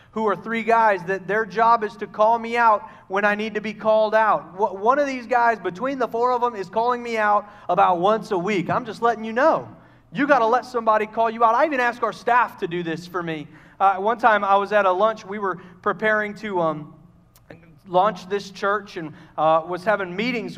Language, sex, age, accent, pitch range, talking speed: English, male, 40-59, American, 185-225 Hz, 235 wpm